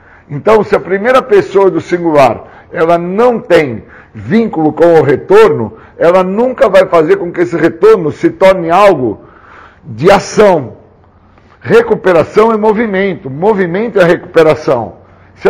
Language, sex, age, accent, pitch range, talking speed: Portuguese, male, 60-79, Brazilian, 155-220 Hz, 130 wpm